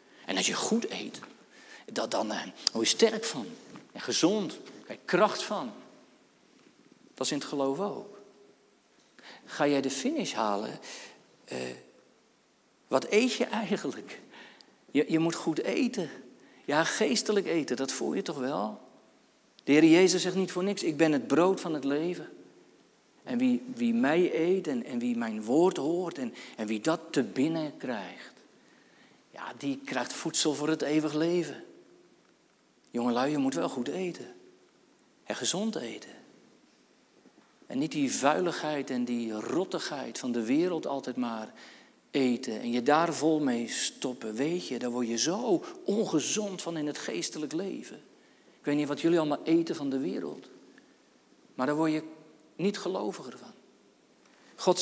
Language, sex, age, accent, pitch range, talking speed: Dutch, male, 50-69, Dutch, 140-215 Hz, 155 wpm